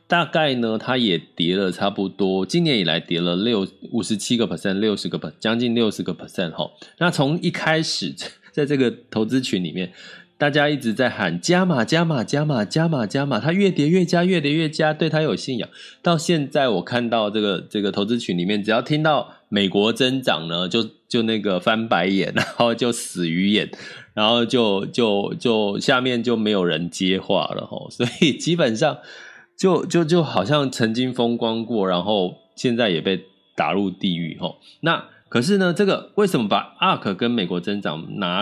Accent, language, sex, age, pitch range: native, Chinese, male, 20-39, 100-150 Hz